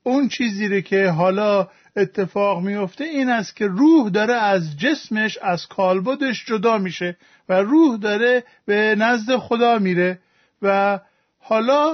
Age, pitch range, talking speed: 50-69, 190-260 Hz, 135 wpm